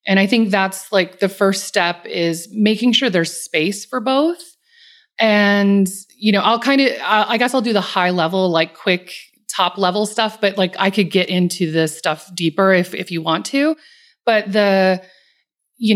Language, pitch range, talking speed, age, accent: English, 180-230 Hz, 190 wpm, 30-49, American